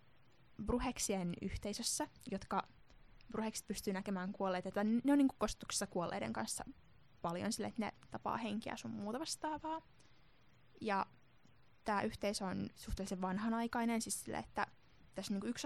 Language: Finnish